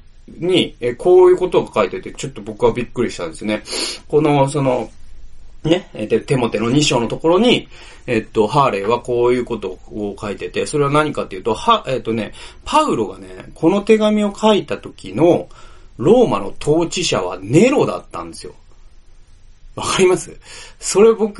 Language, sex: Japanese, male